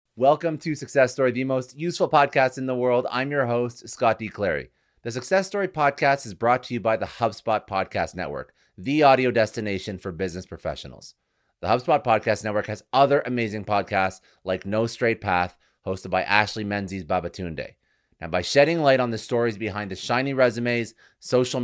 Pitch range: 95-120 Hz